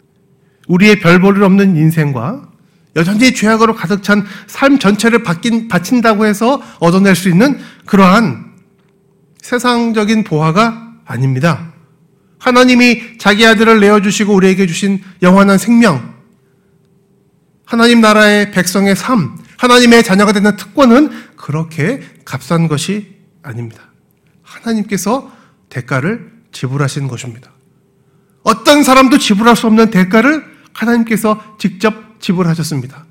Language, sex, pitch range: Korean, male, 175-230 Hz